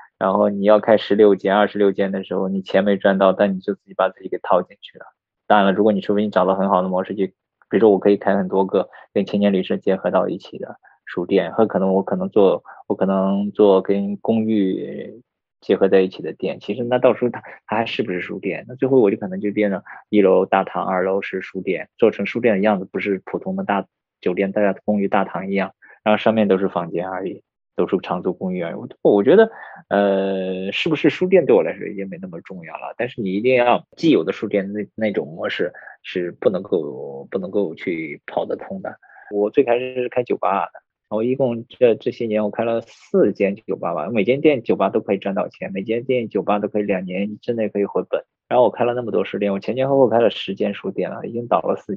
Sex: male